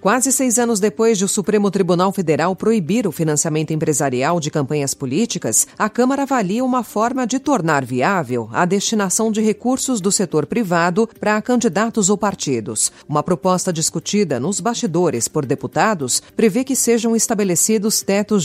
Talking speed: 155 wpm